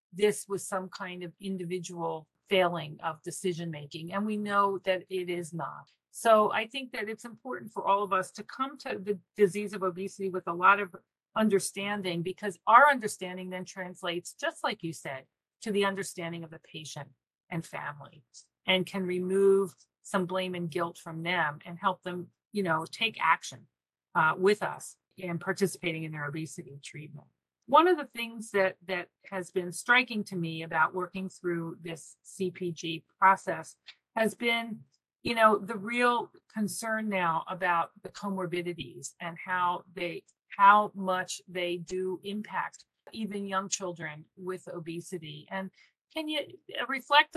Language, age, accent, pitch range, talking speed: English, 40-59, American, 175-200 Hz, 160 wpm